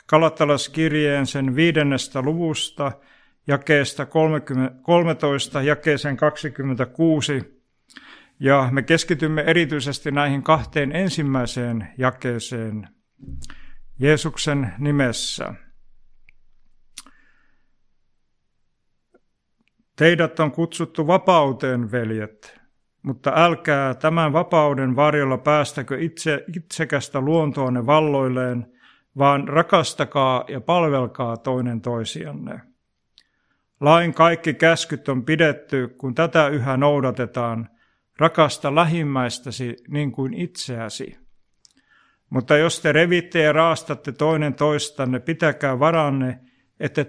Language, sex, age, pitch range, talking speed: Finnish, male, 60-79, 130-160 Hz, 85 wpm